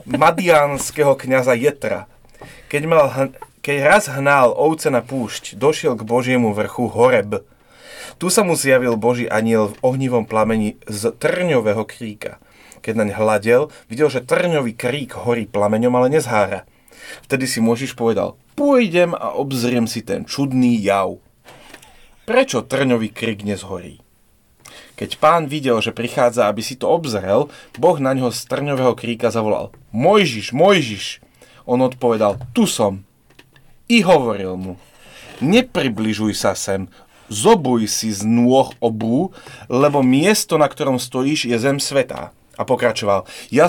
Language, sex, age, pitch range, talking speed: Slovak, male, 30-49, 110-140 Hz, 135 wpm